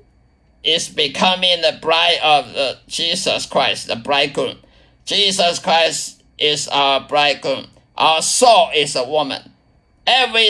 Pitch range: 125-180 Hz